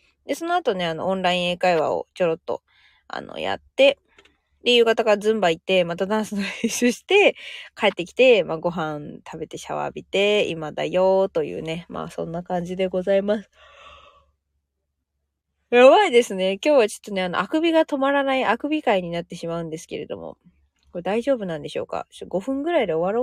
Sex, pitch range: female, 180-255 Hz